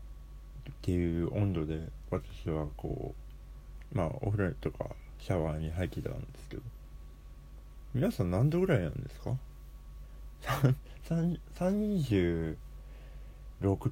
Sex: male